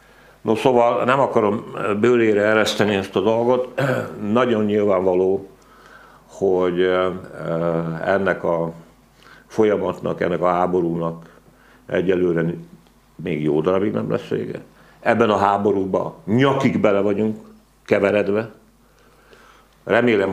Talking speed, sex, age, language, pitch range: 95 wpm, male, 60-79, Hungarian, 85-110 Hz